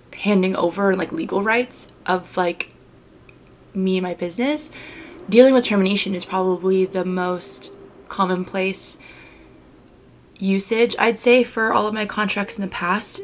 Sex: female